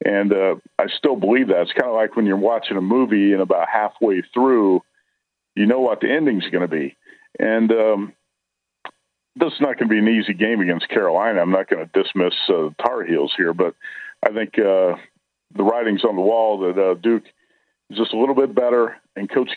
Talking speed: 215 wpm